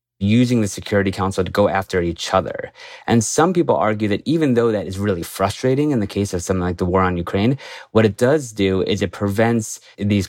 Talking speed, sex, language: 220 wpm, male, English